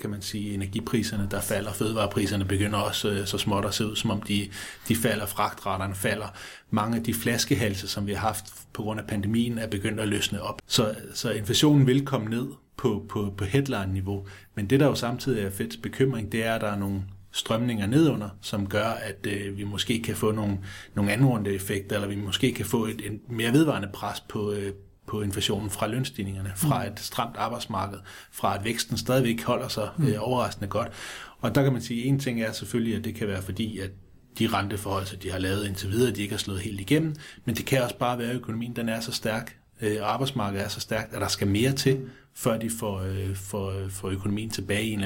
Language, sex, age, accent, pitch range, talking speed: Danish, male, 30-49, native, 100-120 Hz, 225 wpm